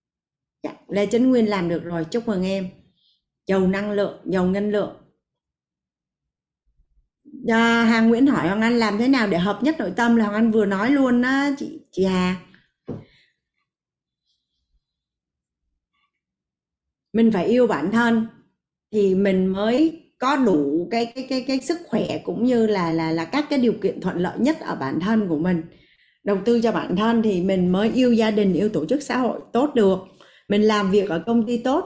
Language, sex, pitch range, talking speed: Vietnamese, female, 190-240 Hz, 185 wpm